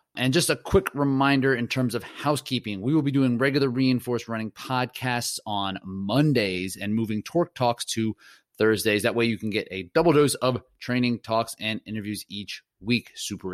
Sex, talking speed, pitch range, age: male, 180 wpm, 105-135 Hz, 30-49